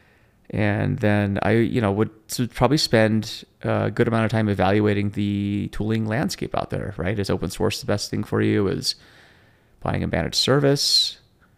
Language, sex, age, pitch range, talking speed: English, male, 30-49, 100-115 Hz, 170 wpm